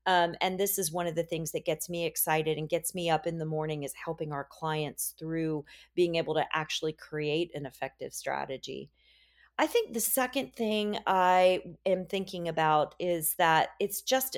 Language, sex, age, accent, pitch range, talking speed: English, female, 40-59, American, 155-200 Hz, 190 wpm